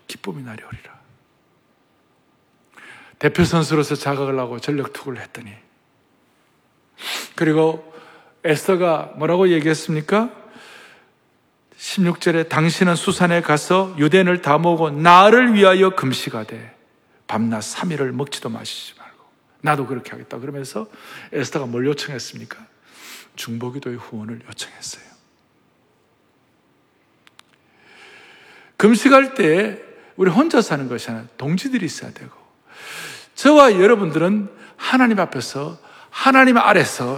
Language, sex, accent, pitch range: Korean, male, native, 155-250 Hz